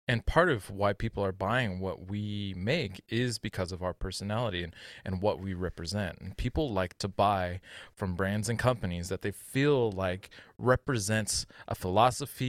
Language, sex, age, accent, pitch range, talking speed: English, male, 20-39, American, 95-125 Hz, 175 wpm